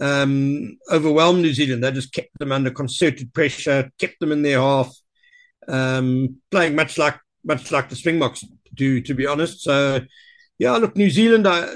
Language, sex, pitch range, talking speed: English, male, 130-160 Hz, 175 wpm